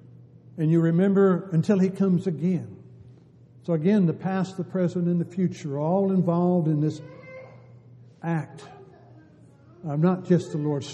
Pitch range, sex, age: 125-175 Hz, male, 60-79